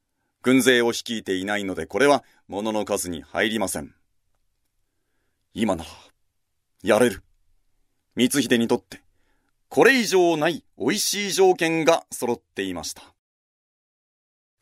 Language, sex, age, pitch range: Japanese, male, 40-59, 95-130 Hz